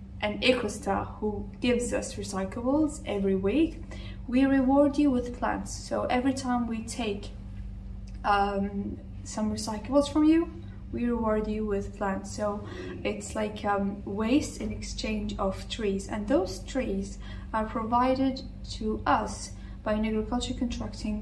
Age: 20-39